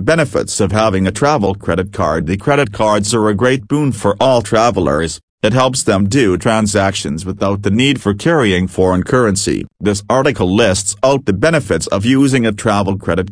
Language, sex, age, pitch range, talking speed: English, male, 40-59, 95-120 Hz, 180 wpm